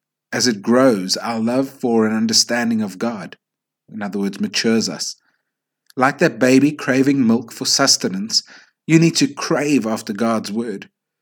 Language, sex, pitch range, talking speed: English, male, 115-170 Hz, 155 wpm